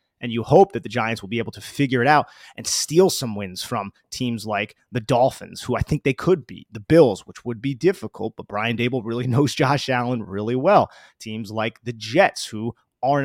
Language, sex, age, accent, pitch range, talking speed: English, male, 30-49, American, 115-145 Hz, 220 wpm